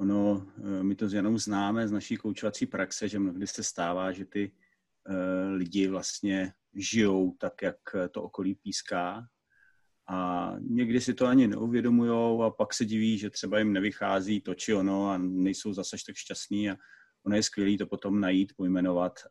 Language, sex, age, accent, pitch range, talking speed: Czech, male, 30-49, native, 95-110 Hz, 170 wpm